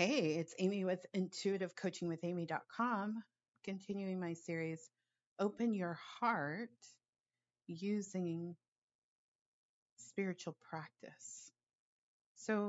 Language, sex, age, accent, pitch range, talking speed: English, female, 30-49, American, 165-195 Hz, 75 wpm